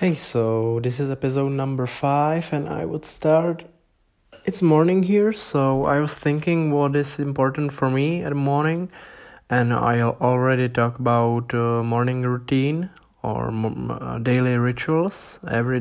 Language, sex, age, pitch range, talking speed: English, male, 20-39, 115-140 Hz, 150 wpm